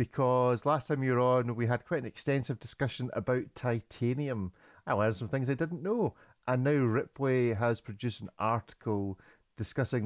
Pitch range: 110-135 Hz